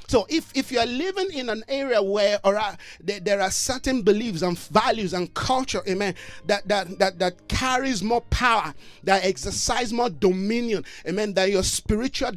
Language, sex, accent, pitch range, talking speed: English, male, Nigerian, 190-250 Hz, 180 wpm